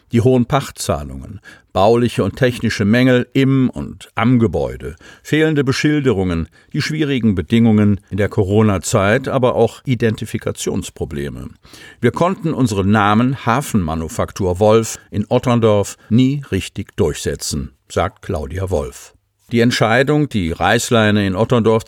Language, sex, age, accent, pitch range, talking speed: German, male, 50-69, German, 95-125 Hz, 115 wpm